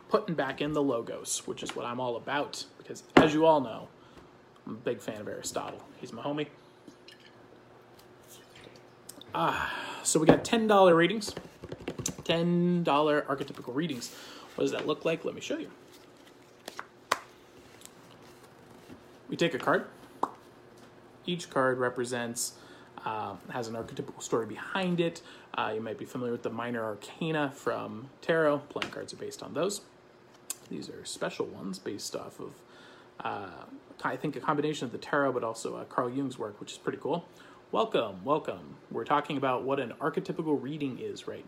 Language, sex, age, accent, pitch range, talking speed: English, male, 30-49, American, 120-155 Hz, 160 wpm